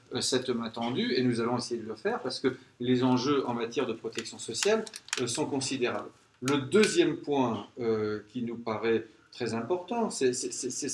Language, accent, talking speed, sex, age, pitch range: French, French, 165 wpm, male, 40-59, 120-165 Hz